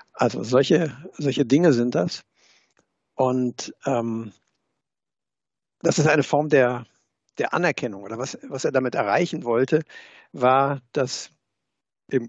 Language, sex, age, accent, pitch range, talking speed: German, male, 60-79, German, 120-145 Hz, 120 wpm